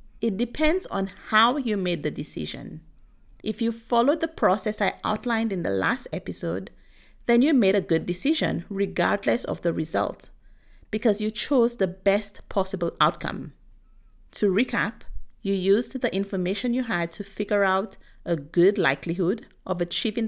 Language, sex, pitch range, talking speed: English, female, 175-225 Hz, 155 wpm